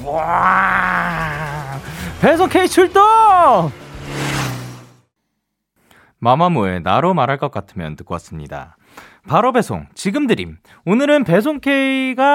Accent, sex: native, male